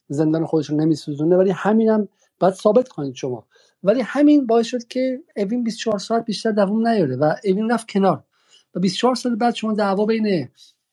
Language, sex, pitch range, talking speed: Persian, male, 160-215 Hz, 180 wpm